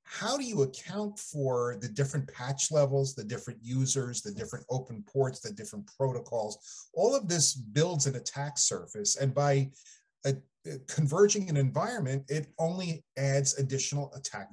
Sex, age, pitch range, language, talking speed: male, 30-49, 130-155 Hz, English, 155 wpm